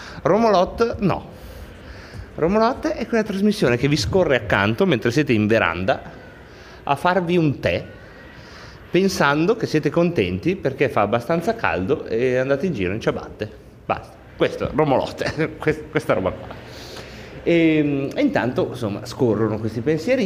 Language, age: Italian, 30-49